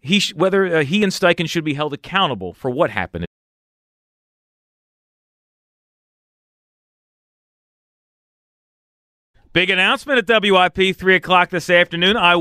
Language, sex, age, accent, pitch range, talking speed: English, male, 40-59, American, 125-185 Hz, 110 wpm